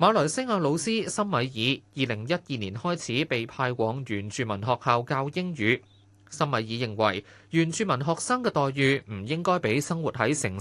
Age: 20-39